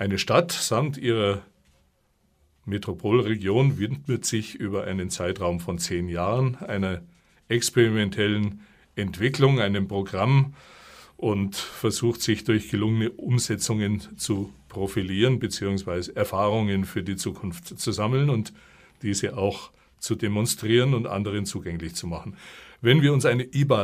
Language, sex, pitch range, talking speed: German, male, 100-120 Hz, 120 wpm